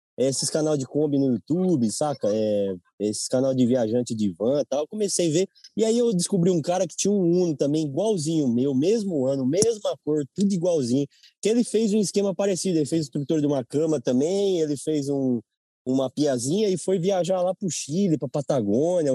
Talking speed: 210 wpm